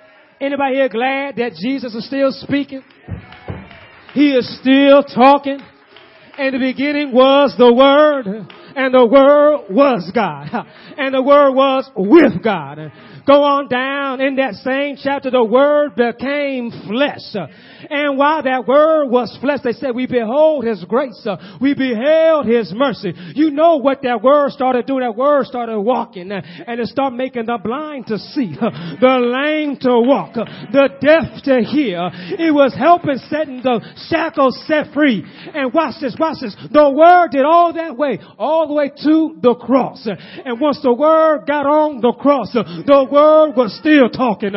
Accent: American